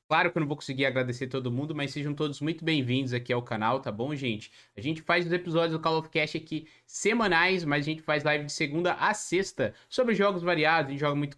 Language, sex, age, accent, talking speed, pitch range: Portuguese, male, 20-39, Brazilian, 250 wpm, 140-180 Hz